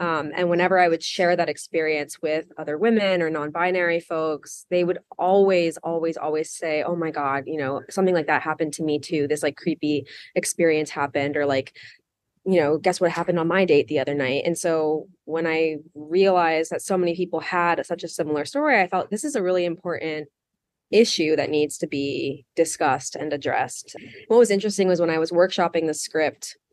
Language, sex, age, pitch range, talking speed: English, female, 20-39, 155-185 Hz, 200 wpm